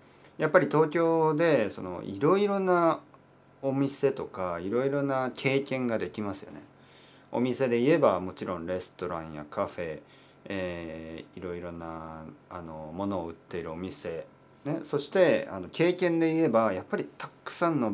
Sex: male